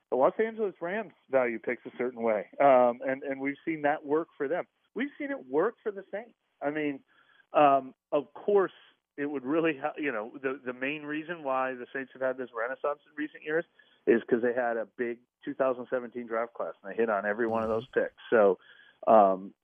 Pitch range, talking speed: 120-155 Hz, 215 wpm